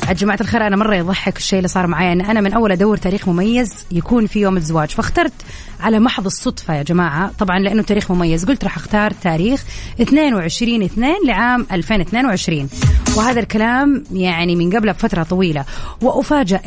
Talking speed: 155 wpm